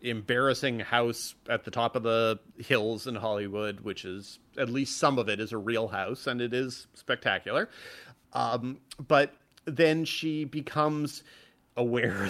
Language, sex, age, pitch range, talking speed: English, male, 30-49, 105-130 Hz, 150 wpm